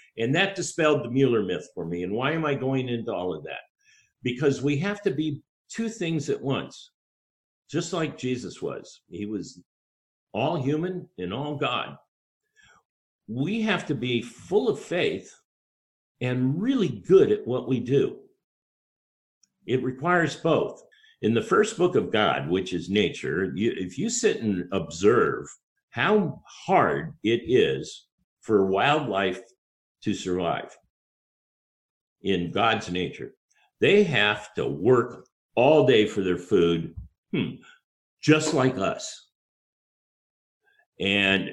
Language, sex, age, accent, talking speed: English, male, 60-79, American, 135 wpm